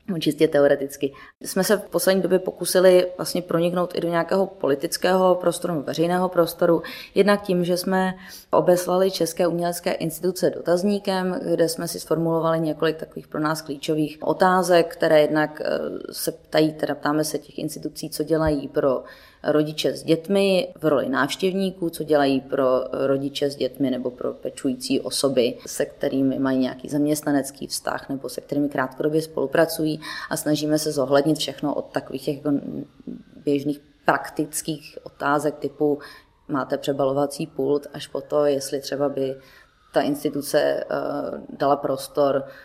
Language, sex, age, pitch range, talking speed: Czech, female, 30-49, 145-170 Hz, 140 wpm